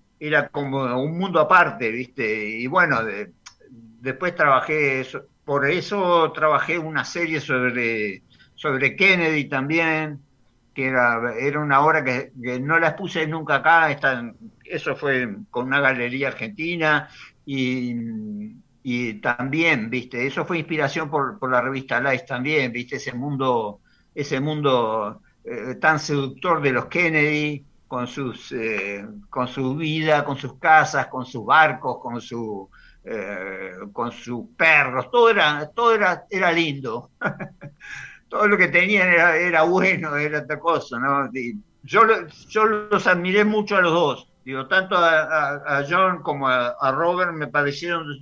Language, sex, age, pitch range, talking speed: Spanish, male, 50-69, 130-165 Hz, 150 wpm